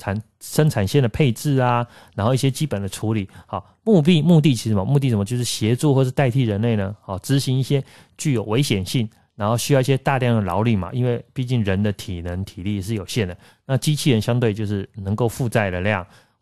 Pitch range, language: 105-135 Hz, Chinese